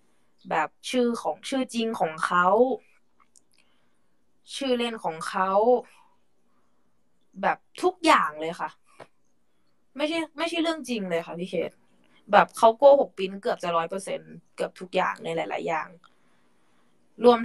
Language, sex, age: Thai, female, 20-39